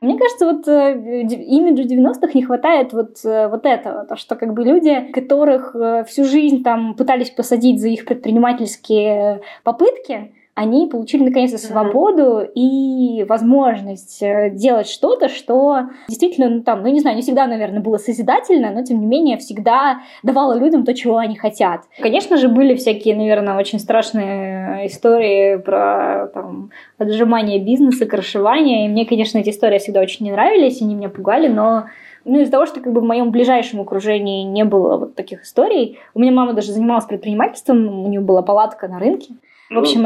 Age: 20-39